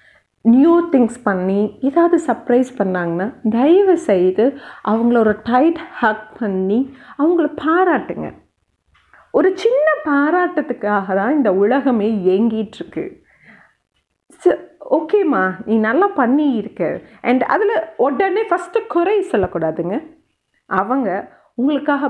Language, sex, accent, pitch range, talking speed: Tamil, female, native, 195-305 Hz, 90 wpm